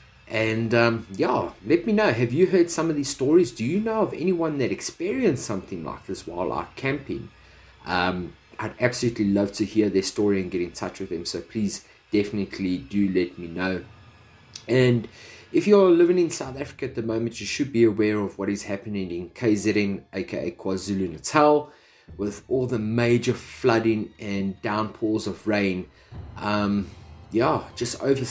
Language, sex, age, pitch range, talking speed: English, male, 30-49, 95-115 Hz, 170 wpm